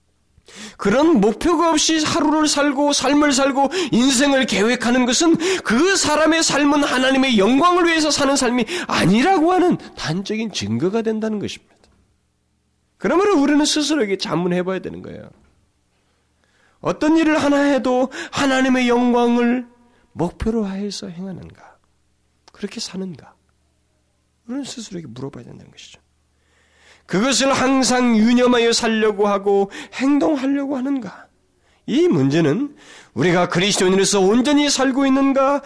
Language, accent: Korean, native